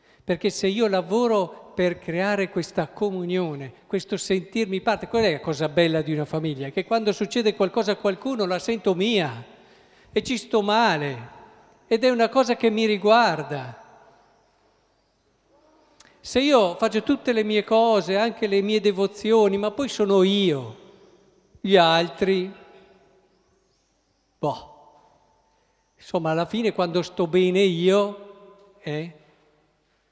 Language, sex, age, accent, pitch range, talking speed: Italian, male, 50-69, native, 150-210 Hz, 130 wpm